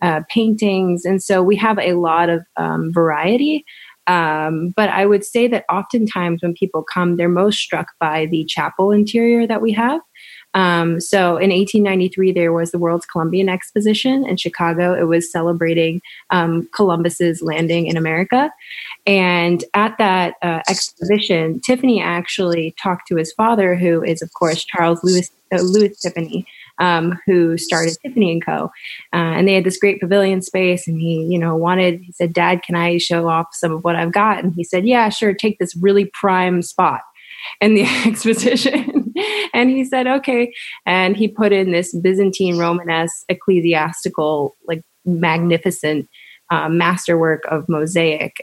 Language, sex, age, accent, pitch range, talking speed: English, female, 20-39, American, 165-200 Hz, 160 wpm